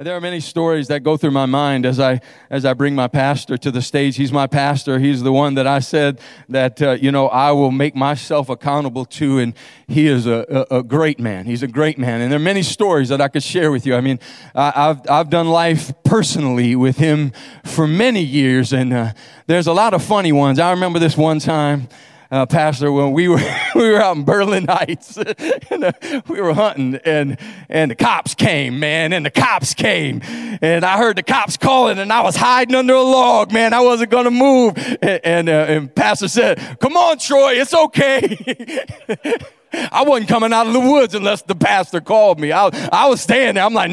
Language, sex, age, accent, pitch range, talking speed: English, male, 40-59, American, 140-210 Hz, 220 wpm